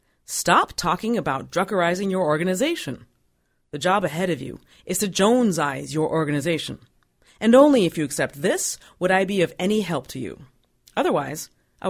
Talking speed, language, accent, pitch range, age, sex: 160 wpm, English, American, 145-210 Hz, 40-59, female